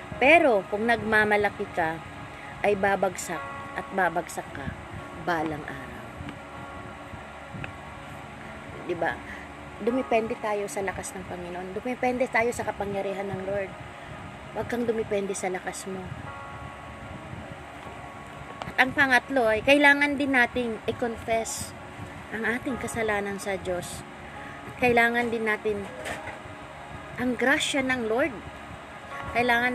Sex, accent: female, native